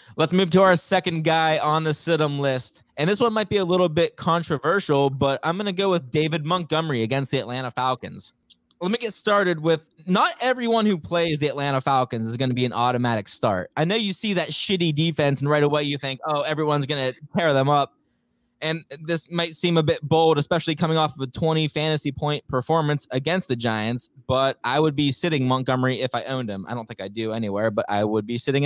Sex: male